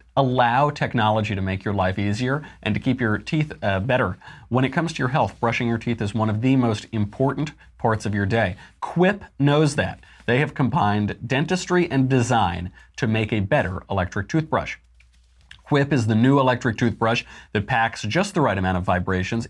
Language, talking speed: English, 190 wpm